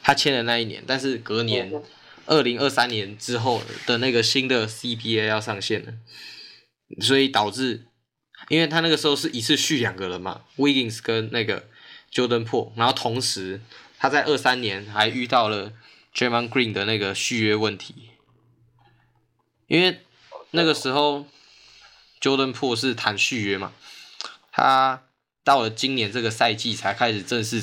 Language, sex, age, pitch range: Chinese, male, 10-29, 110-130 Hz